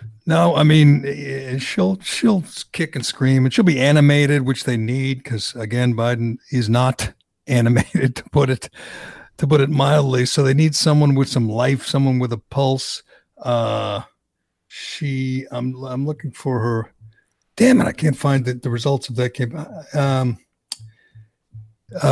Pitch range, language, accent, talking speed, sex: 125-145 Hz, English, American, 155 wpm, male